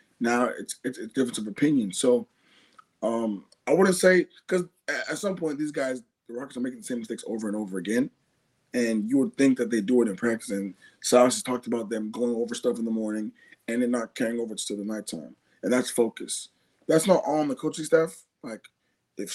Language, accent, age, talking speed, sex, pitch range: English, American, 20-39, 220 wpm, male, 110-145 Hz